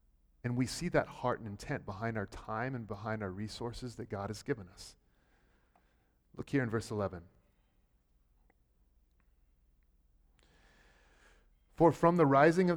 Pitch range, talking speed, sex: 105-135 Hz, 135 wpm, male